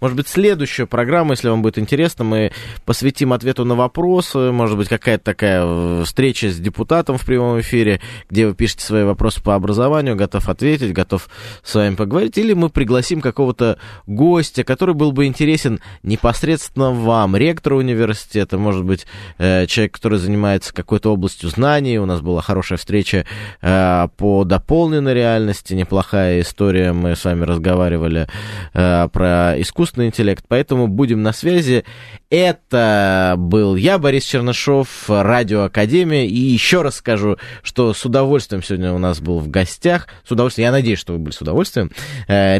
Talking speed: 150 wpm